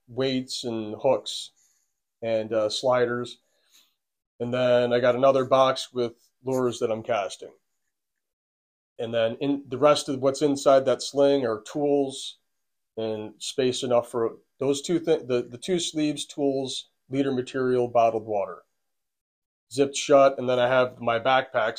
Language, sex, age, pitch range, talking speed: English, male, 30-49, 115-140 Hz, 145 wpm